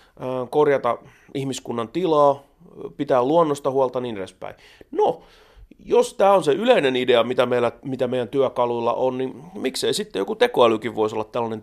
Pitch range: 120-165 Hz